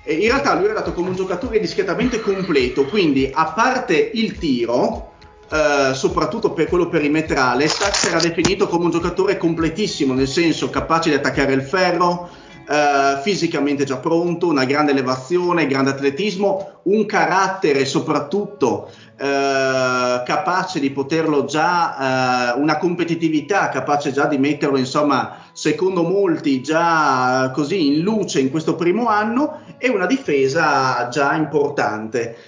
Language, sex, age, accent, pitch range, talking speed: Italian, male, 30-49, native, 140-190 Hz, 140 wpm